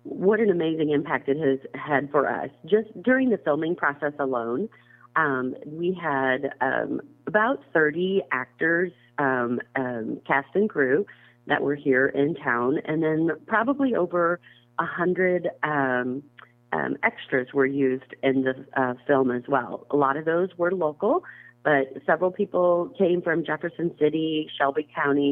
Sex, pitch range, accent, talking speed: female, 130-160 Hz, American, 150 wpm